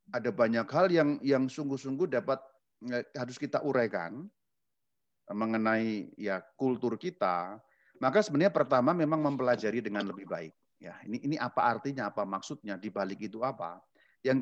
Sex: male